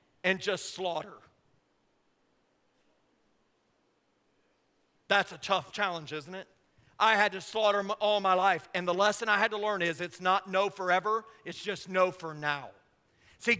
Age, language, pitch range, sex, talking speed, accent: 40-59, English, 185-235 Hz, male, 150 wpm, American